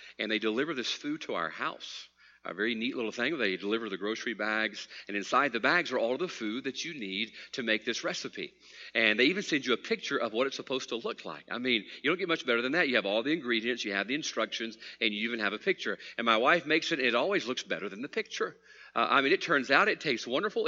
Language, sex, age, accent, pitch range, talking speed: English, male, 40-59, American, 125-200 Hz, 265 wpm